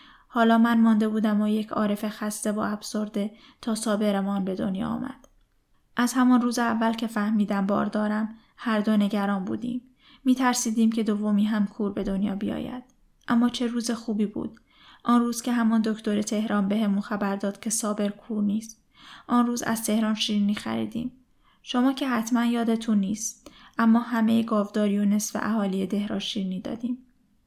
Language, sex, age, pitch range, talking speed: Persian, female, 10-29, 210-245 Hz, 155 wpm